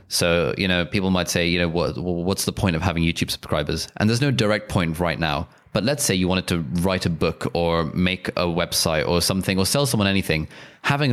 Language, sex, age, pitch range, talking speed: English, male, 20-39, 85-100 Hz, 235 wpm